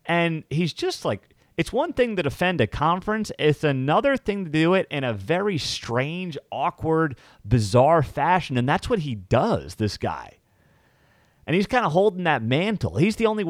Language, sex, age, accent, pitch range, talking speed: English, male, 30-49, American, 115-155 Hz, 180 wpm